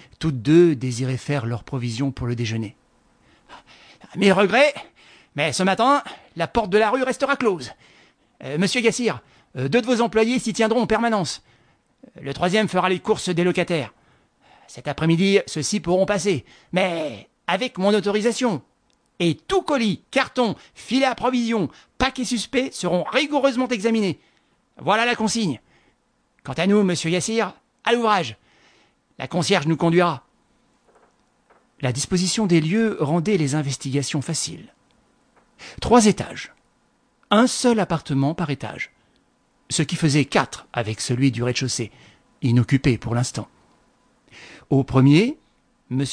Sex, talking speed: male, 135 wpm